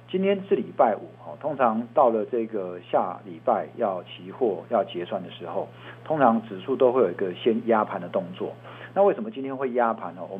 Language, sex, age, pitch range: Chinese, male, 50-69, 100-130 Hz